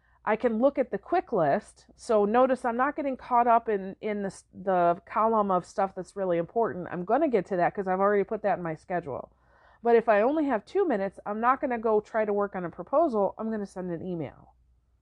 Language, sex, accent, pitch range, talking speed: English, female, American, 180-230 Hz, 250 wpm